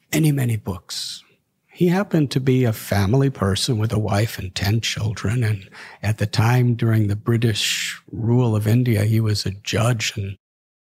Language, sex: English, male